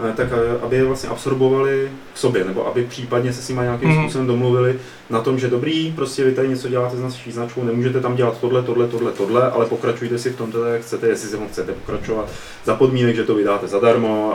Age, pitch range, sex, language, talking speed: 30-49, 110-125 Hz, male, Czech, 225 wpm